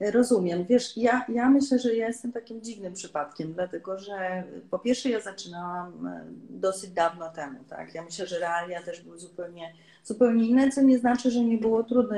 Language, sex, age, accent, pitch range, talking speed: Polish, female, 30-49, native, 180-215 Hz, 180 wpm